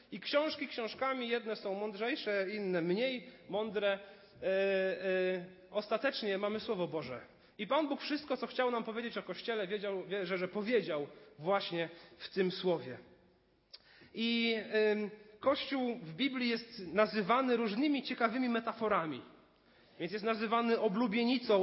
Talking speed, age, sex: 120 wpm, 30-49, male